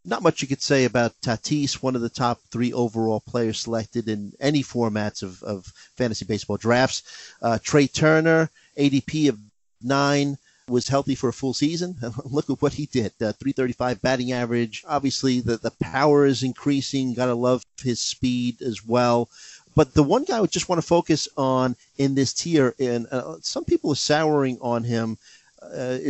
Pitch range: 115-140 Hz